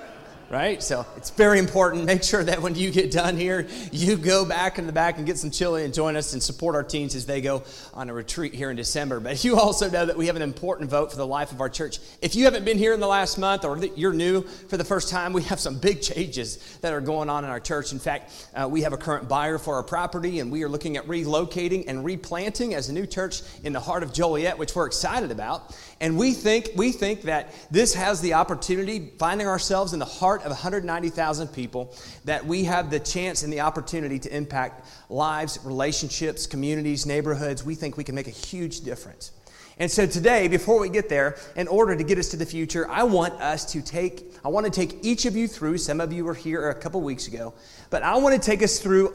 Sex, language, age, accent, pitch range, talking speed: male, English, 30-49, American, 145-185 Hz, 240 wpm